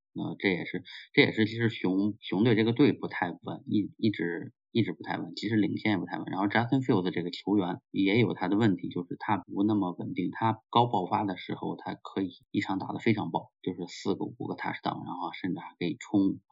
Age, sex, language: 30-49, male, English